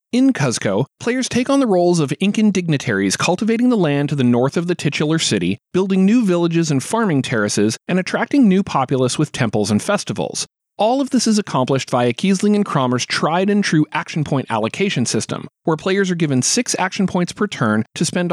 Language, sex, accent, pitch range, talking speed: English, male, American, 135-195 Hz, 195 wpm